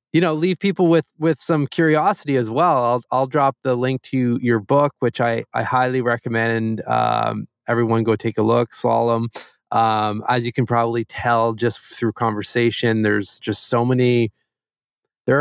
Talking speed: 170 wpm